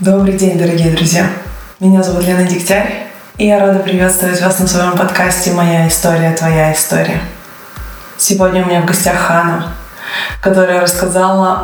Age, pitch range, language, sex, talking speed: 20-39, 170-185 Hz, Russian, female, 145 wpm